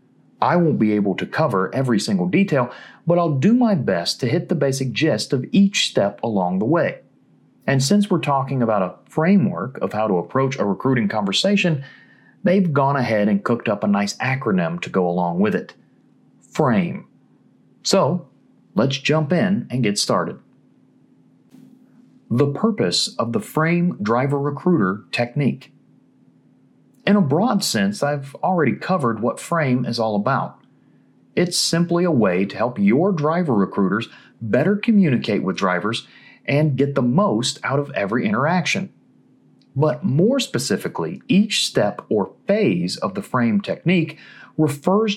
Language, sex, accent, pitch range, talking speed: English, male, American, 120-190 Hz, 150 wpm